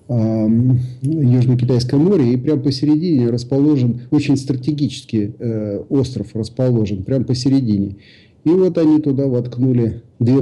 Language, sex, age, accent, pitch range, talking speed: Russian, male, 50-69, native, 110-140 Hz, 105 wpm